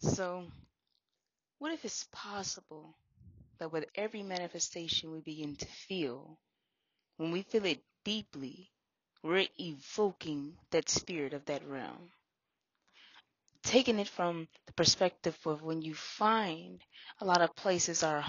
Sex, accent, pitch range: female, American, 155-195 Hz